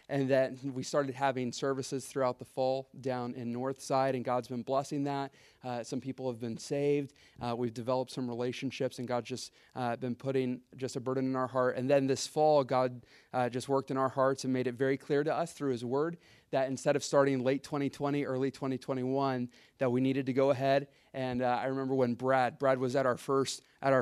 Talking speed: 215 wpm